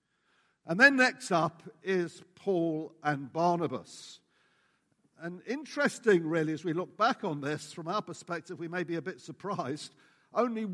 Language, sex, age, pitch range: English, male, 60-79, 150-190 Hz